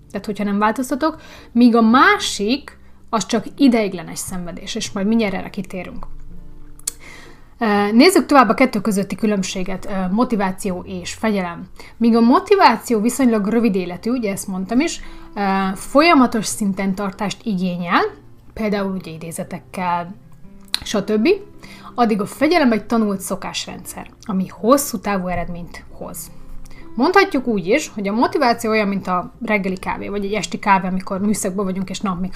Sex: female